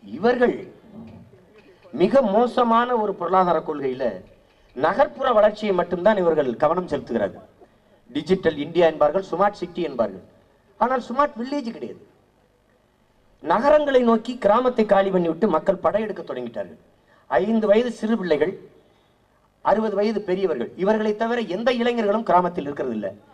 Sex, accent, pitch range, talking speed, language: male, Indian, 185-250 Hz, 110 wpm, English